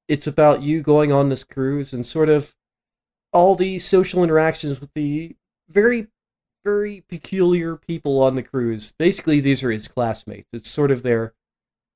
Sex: male